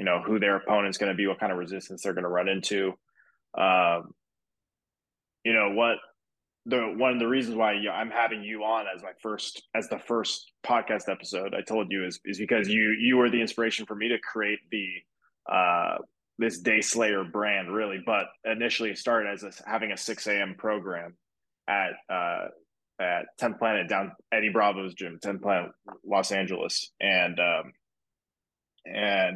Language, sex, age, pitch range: English, male, 20-39, 100-115 Hz